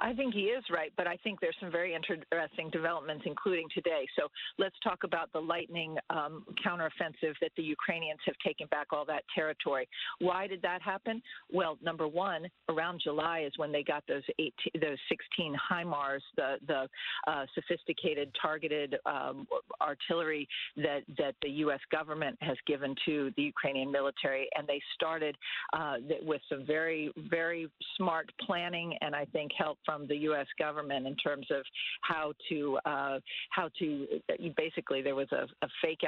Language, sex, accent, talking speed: English, female, American, 165 wpm